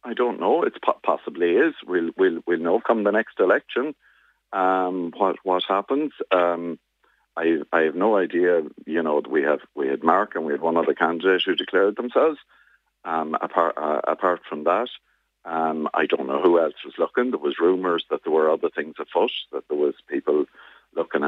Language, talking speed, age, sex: English, 195 wpm, 50-69, male